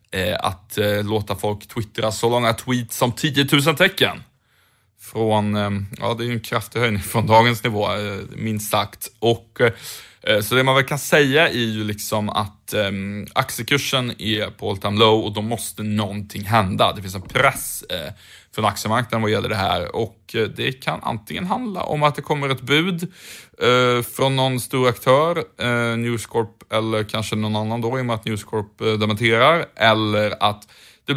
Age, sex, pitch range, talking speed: 20-39, male, 105-125 Hz, 185 wpm